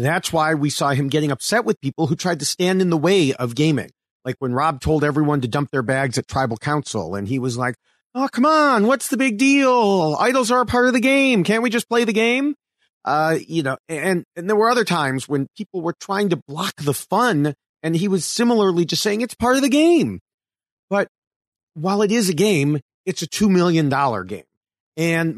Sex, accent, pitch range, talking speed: male, American, 135-195 Hz, 220 wpm